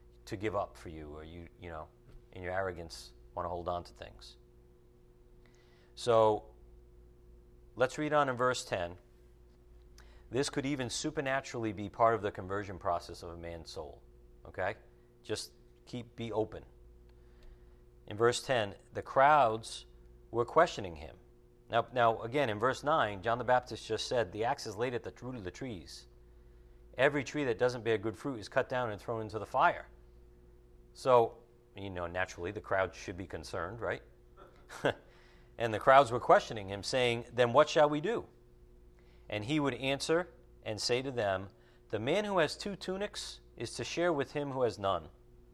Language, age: English, 40-59